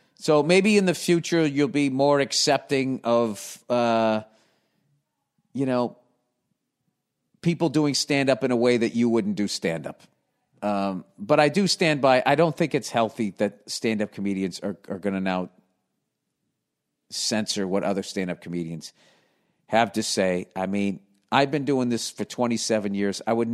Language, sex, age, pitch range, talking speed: English, male, 50-69, 100-130 Hz, 155 wpm